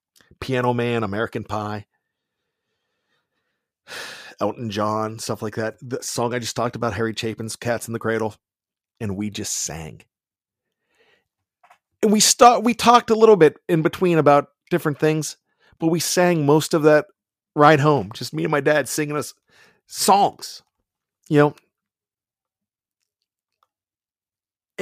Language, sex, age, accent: English, male, 40-59, American